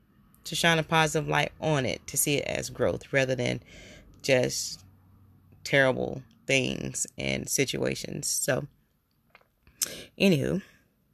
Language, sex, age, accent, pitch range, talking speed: English, female, 20-39, American, 125-175 Hz, 115 wpm